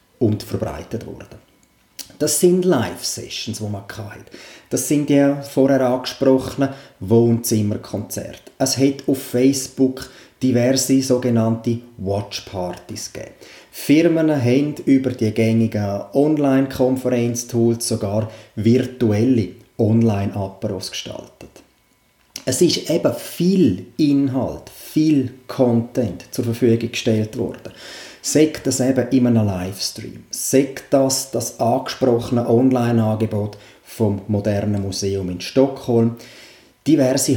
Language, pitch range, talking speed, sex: German, 110-130 Hz, 95 wpm, male